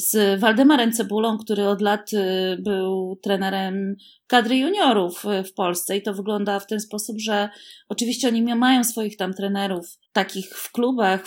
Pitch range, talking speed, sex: 200-255 Hz, 155 wpm, female